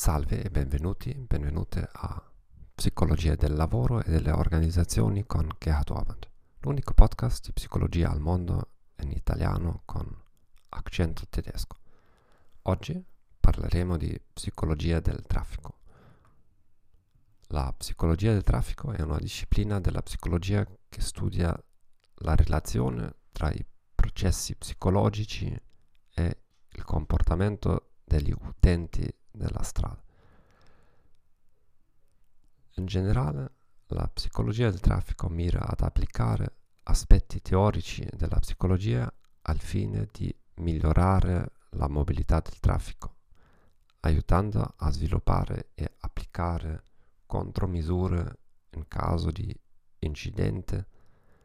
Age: 40-59